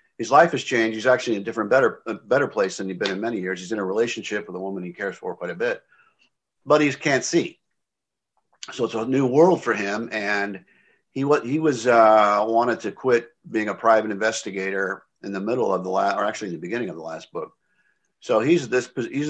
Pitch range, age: 100-125 Hz, 50-69